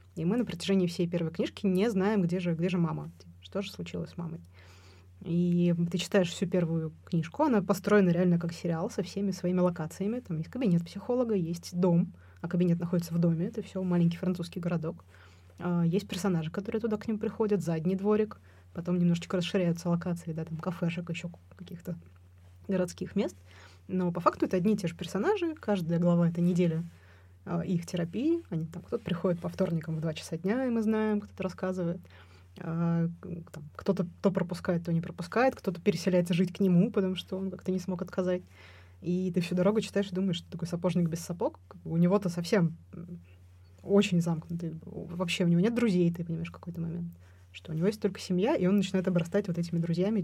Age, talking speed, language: 20-39, 190 wpm, Russian